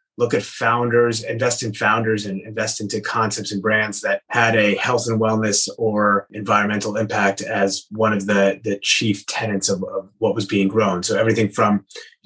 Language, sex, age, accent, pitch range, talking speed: English, male, 30-49, American, 100-115 Hz, 185 wpm